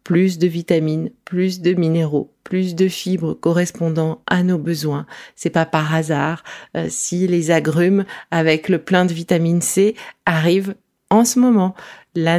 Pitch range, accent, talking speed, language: 155-210 Hz, French, 155 wpm, French